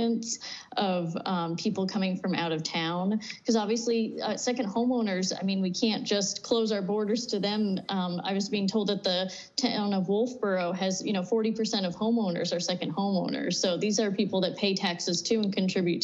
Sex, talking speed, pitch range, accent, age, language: female, 195 wpm, 180-220 Hz, American, 30-49, English